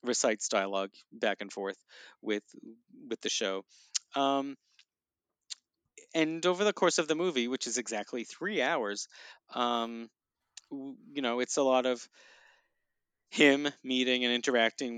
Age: 30-49